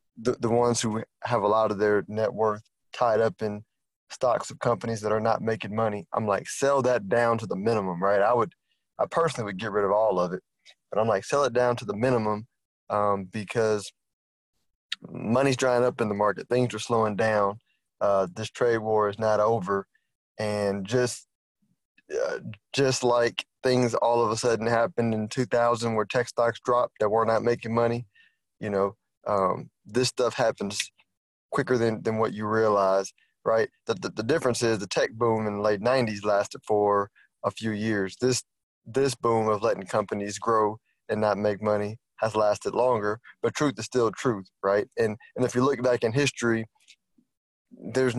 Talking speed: 190 wpm